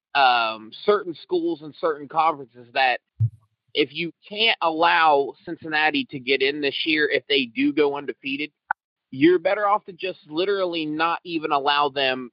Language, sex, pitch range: English, male, 140-195 Hz